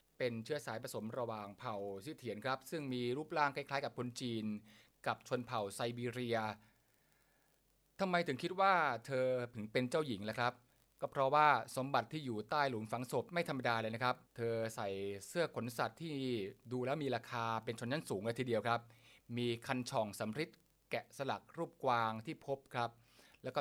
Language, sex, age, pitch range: Thai, male, 20-39, 115-145 Hz